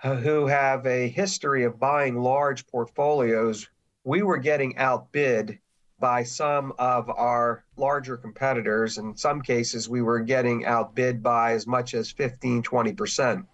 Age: 50-69